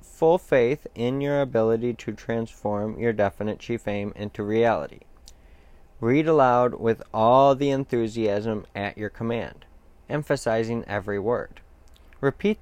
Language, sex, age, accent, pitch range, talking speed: English, male, 20-39, American, 105-130 Hz, 125 wpm